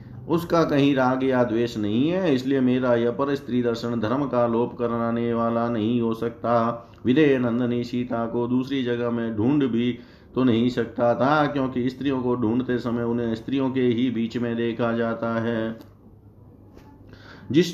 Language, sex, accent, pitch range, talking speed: Hindi, male, native, 120-135 Hz, 165 wpm